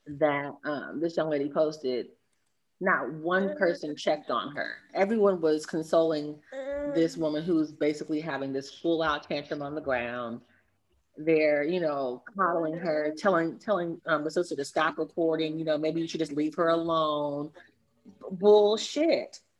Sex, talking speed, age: female, 150 wpm, 30-49